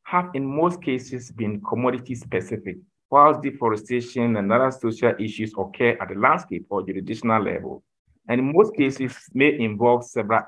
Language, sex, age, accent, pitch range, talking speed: English, male, 50-69, Nigerian, 105-130 Hz, 155 wpm